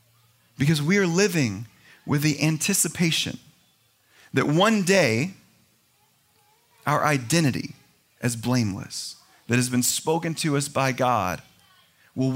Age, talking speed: 30-49, 110 wpm